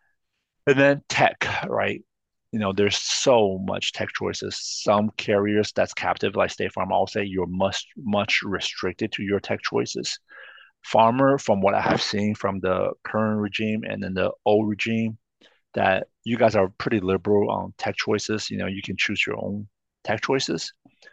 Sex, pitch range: male, 95-110 Hz